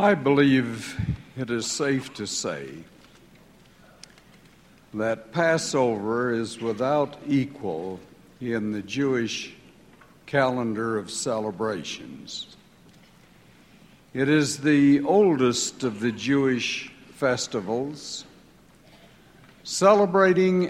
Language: English